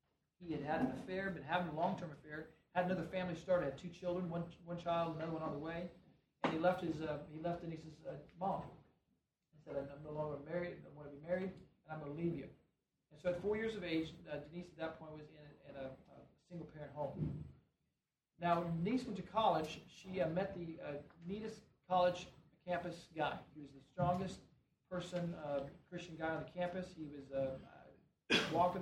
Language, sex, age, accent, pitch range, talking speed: English, male, 40-59, American, 155-180 Hz, 210 wpm